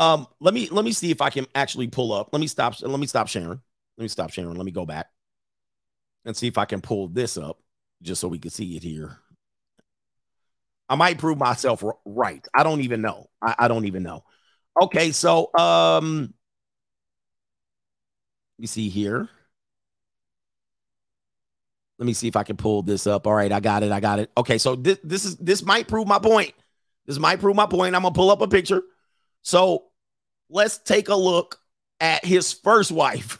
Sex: male